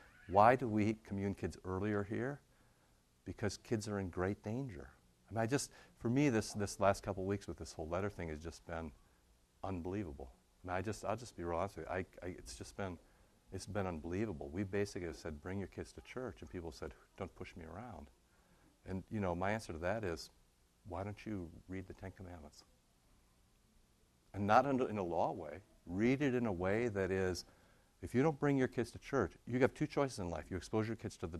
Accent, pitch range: American, 85-110 Hz